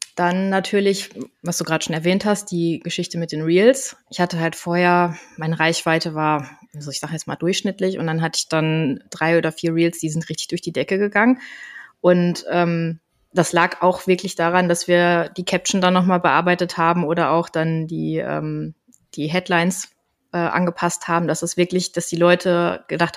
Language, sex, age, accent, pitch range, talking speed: German, female, 20-39, German, 165-190 Hz, 185 wpm